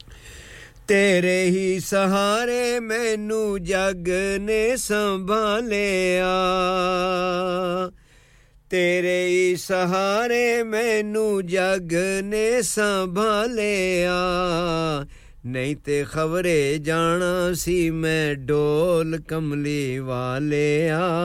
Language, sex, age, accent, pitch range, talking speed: English, male, 50-69, Indian, 145-190 Hz, 50 wpm